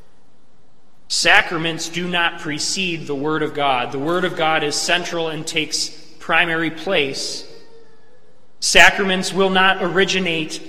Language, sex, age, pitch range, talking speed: English, male, 20-39, 150-175 Hz, 125 wpm